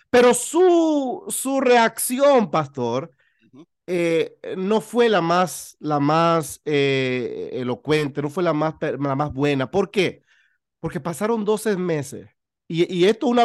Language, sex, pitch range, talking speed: Spanish, male, 165-230 Hz, 140 wpm